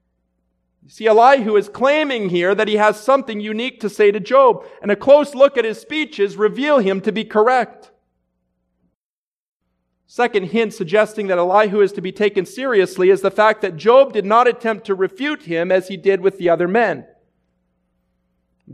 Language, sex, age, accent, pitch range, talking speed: English, male, 40-59, American, 175-235 Hz, 175 wpm